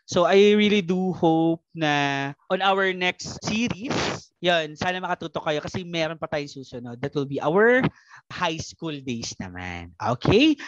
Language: Filipino